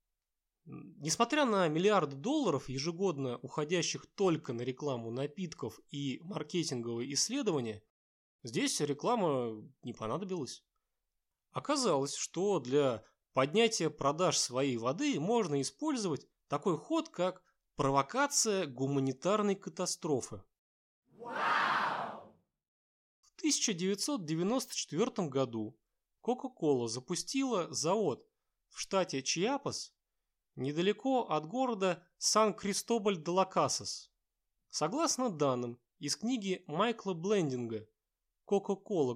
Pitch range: 135-210 Hz